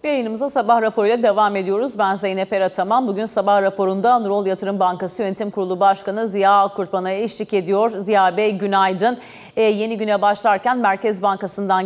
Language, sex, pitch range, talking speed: Turkish, female, 200-235 Hz, 150 wpm